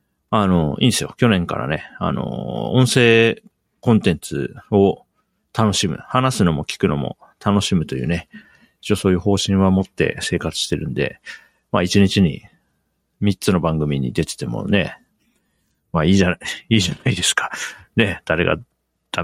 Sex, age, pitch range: male, 40-59, 90-105 Hz